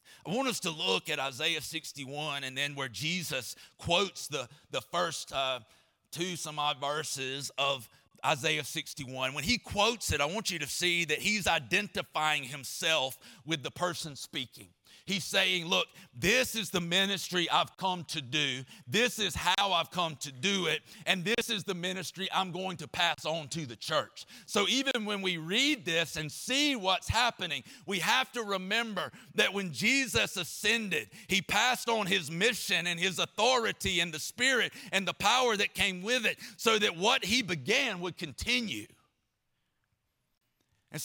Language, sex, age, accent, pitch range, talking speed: English, male, 40-59, American, 155-220 Hz, 170 wpm